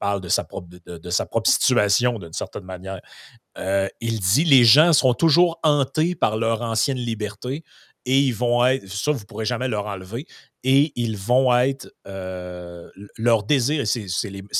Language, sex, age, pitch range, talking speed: French, male, 30-49, 100-135 Hz, 180 wpm